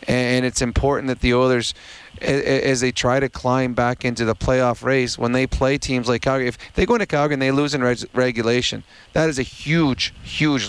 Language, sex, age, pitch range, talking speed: English, male, 30-49, 120-140 Hz, 210 wpm